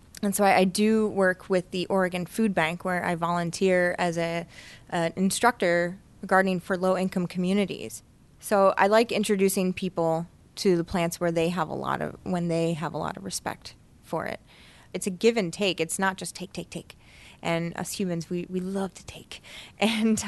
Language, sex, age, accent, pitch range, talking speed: English, female, 20-39, American, 170-200 Hz, 190 wpm